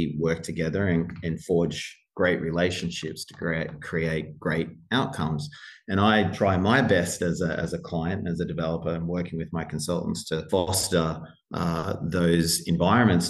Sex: male